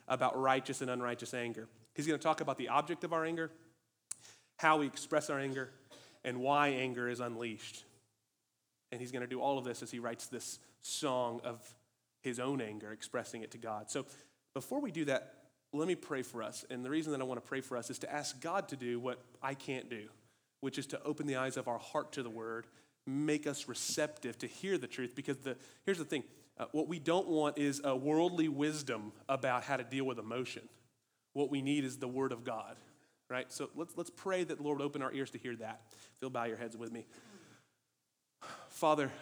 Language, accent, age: English, American, 30-49